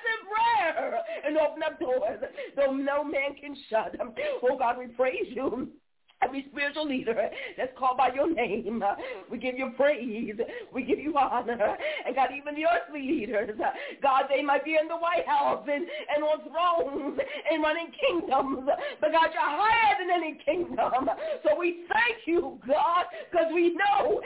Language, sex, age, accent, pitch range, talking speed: English, female, 40-59, American, 275-345 Hz, 170 wpm